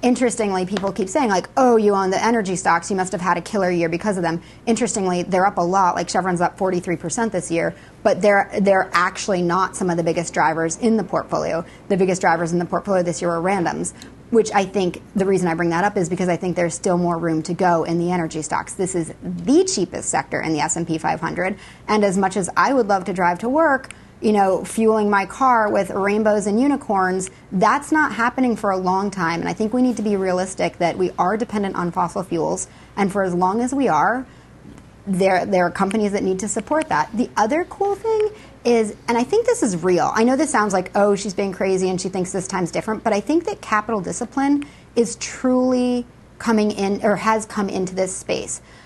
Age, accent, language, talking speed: 30-49, American, English, 230 wpm